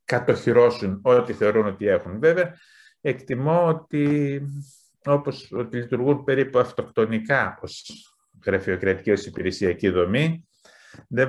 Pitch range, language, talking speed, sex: 100-140 Hz, Greek, 95 wpm, male